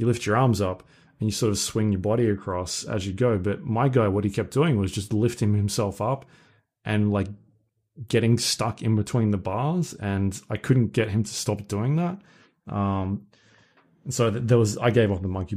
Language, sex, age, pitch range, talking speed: English, male, 20-39, 105-125 Hz, 210 wpm